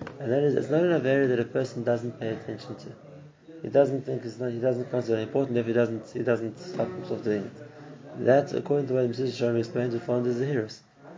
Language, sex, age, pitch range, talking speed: English, male, 30-49, 120-145 Hz, 235 wpm